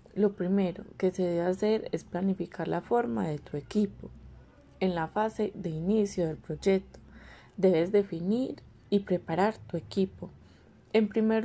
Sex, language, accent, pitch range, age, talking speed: female, Spanish, Colombian, 175-205 Hz, 20-39, 145 wpm